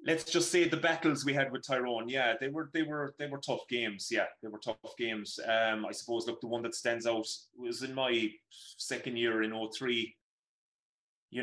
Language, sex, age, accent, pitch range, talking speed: English, male, 30-49, British, 110-135 Hz, 210 wpm